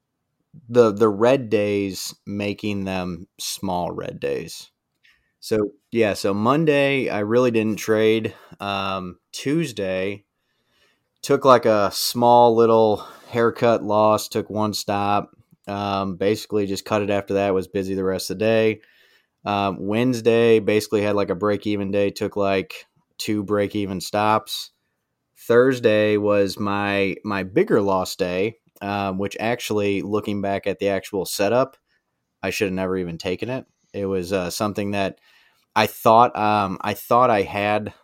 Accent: American